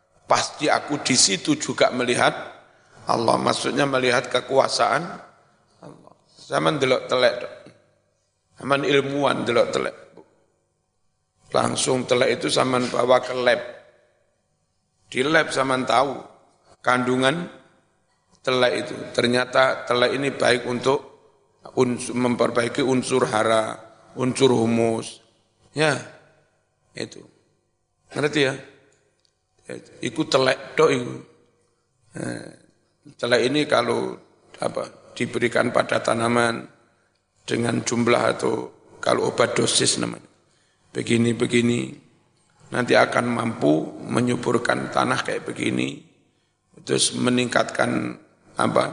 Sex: male